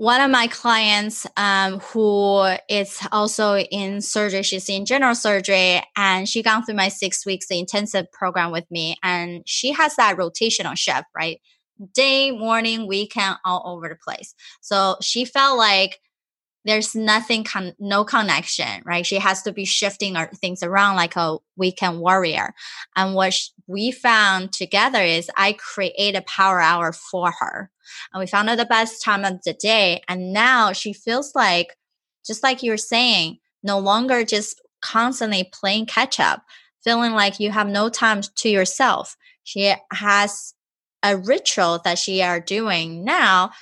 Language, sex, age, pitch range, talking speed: English, female, 20-39, 190-230 Hz, 160 wpm